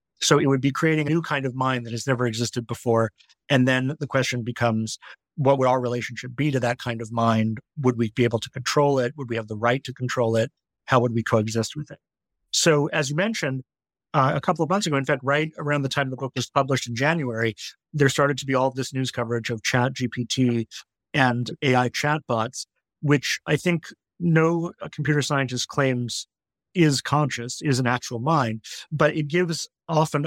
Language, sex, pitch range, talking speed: English, male, 120-145 Hz, 210 wpm